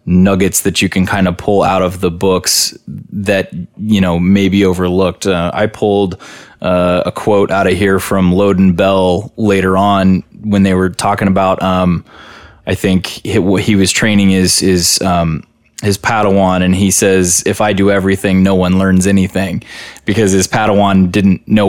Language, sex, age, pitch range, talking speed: English, male, 20-39, 95-105 Hz, 175 wpm